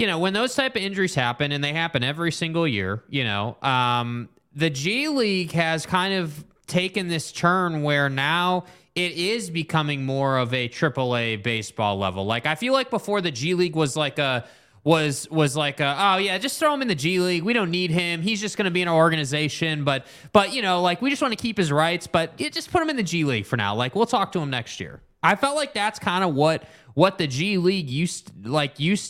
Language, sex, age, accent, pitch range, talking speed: English, male, 20-39, American, 145-190 Hz, 245 wpm